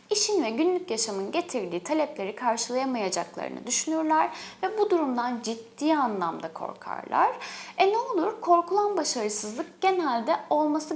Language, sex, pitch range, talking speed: Turkish, female, 230-340 Hz, 115 wpm